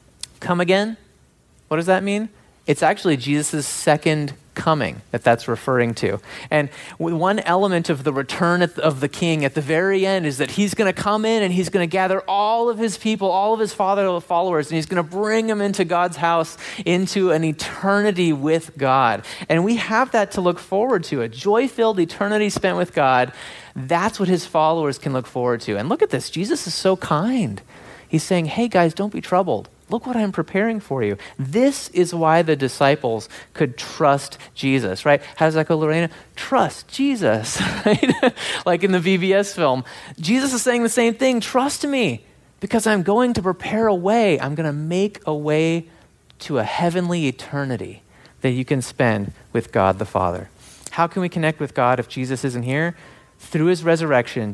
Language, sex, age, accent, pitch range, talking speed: English, male, 30-49, American, 140-200 Hz, 190 wpm